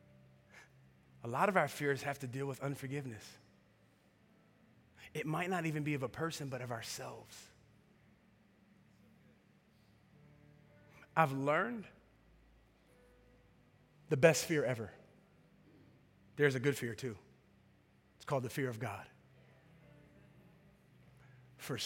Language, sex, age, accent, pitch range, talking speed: English, male, 30-49, American, 110-140 Hz, 105 wpm